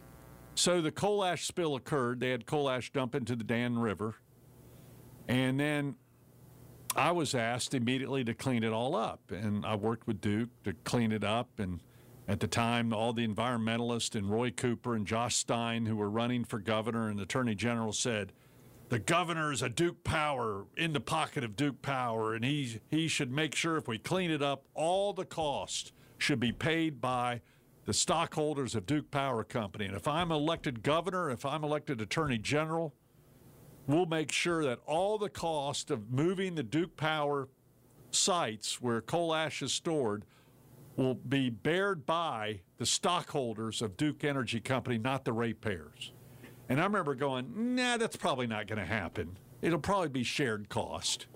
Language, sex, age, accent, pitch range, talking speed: English, male, 50-69, American, 115-150 Hz, 175 wpm